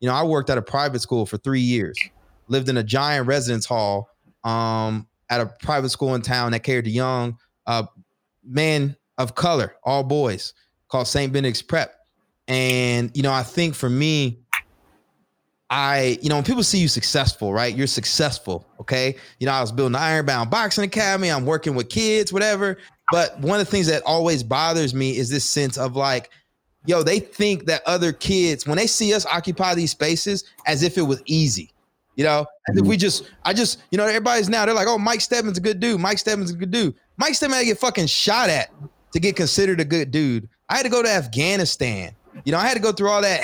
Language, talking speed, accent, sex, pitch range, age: English, 215 wpm, American, male, 130-195 Hz, 20-39